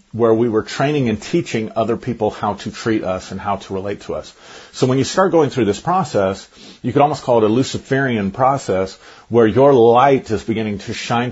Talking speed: 215 wpm